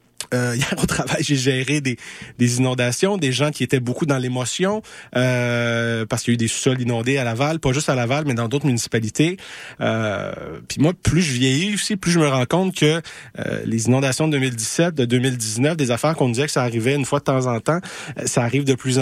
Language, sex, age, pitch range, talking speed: French, male, 30-49, 125-160 Hz, 235 wpm